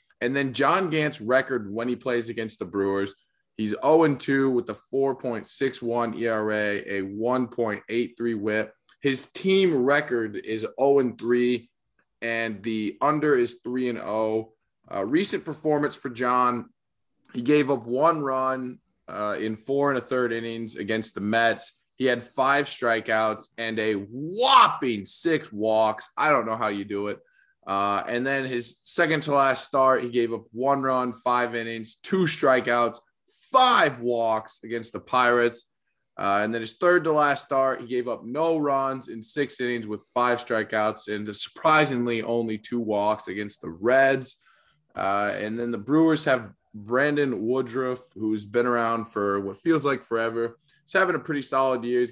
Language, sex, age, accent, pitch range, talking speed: English, male, 20-39, American, 110-135 Hz, 155 wpm